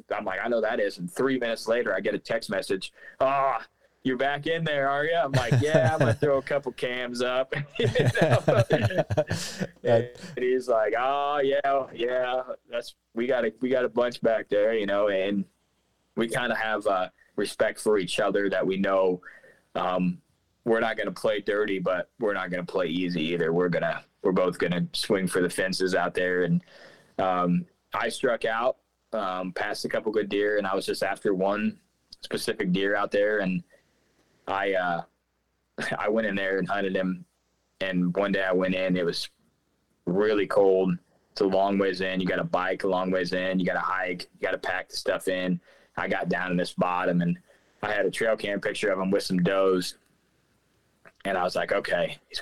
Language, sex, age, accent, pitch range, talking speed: English, male, 20-39, American, 90-125 Hz, 205 wpm